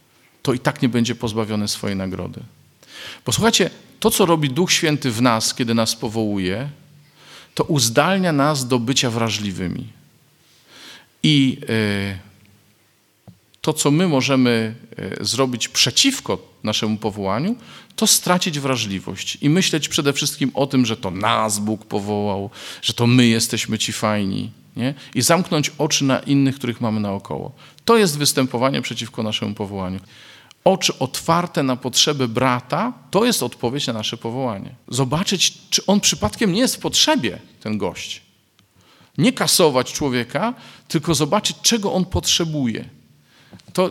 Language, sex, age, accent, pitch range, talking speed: Polish, male, 40-59, native, 110-165 Hz, 135 wpm